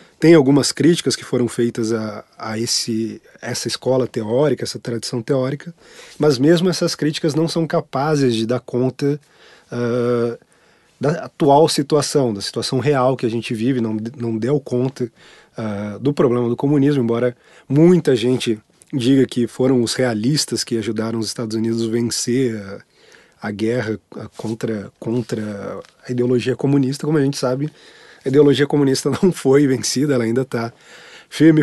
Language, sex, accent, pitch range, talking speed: Portuguese, male, Brazilian, 120-145 Hz, 150 wpm